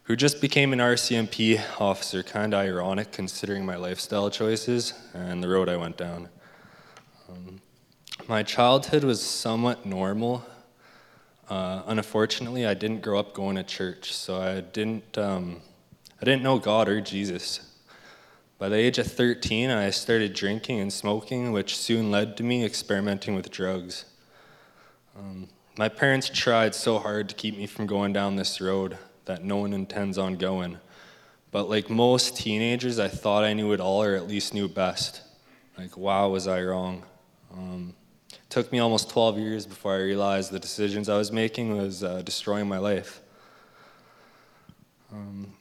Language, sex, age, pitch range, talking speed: English, male, 20-39, 95-115 Hz, 165 wpm